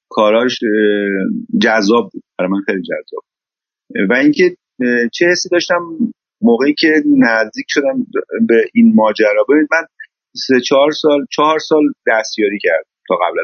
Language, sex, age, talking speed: Persian, male, 30-49, 135 wpm